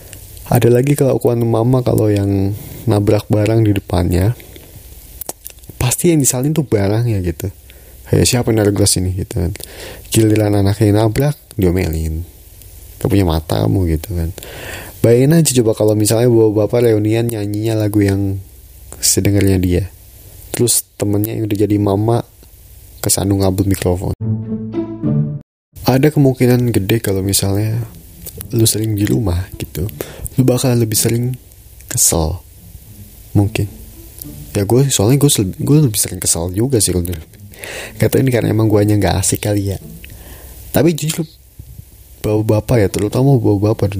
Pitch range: 90-115 Hz